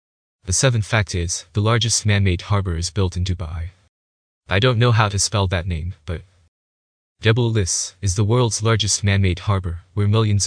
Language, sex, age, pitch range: English, male, 20-39, 90-105 Hz